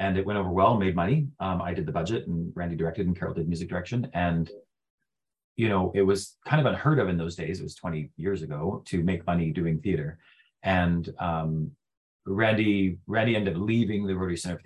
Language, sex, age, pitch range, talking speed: English, male, 30-49, 85-100 Hz, 215 wpm